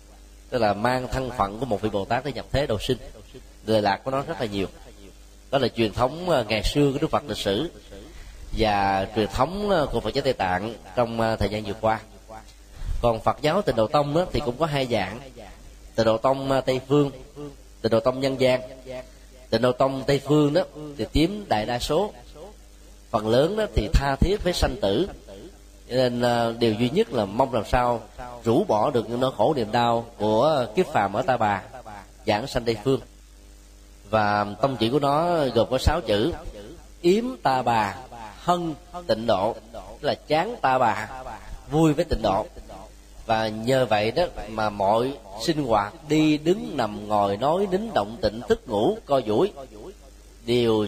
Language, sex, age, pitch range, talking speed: Vietnamese, male, 20-39, 105-135 Hz, 185 wpm